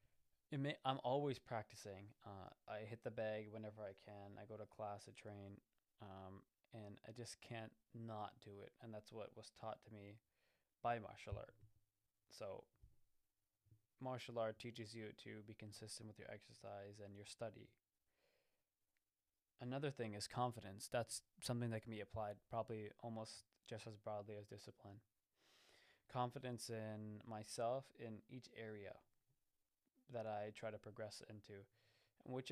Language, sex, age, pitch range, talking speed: English, male, 20-39, 105-120 Hz, 145 wpm